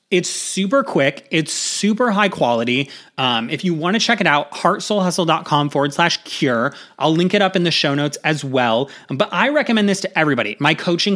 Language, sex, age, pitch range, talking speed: English, male, 30-49, 150-200 Hz, 200 wpm